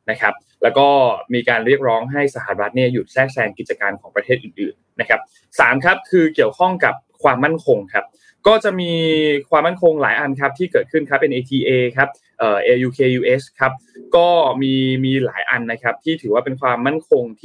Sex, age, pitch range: male, 20-39, 125-175 Hz